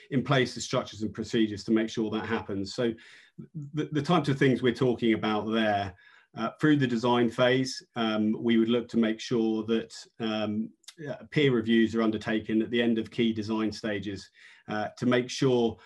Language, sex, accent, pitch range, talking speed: English, male, British, 110-120 Hz, 195 wpm